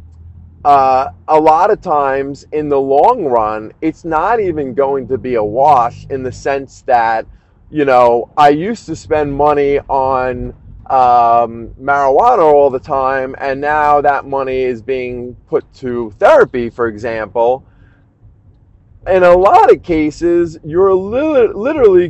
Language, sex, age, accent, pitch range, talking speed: English, male, 30-49, American, 105-150 Hz, 140 wpm